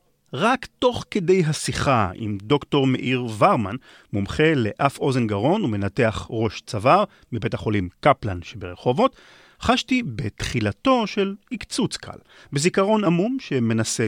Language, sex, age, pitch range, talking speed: Hebrew, male, 40-59, 105-165 Hz, 115 wpm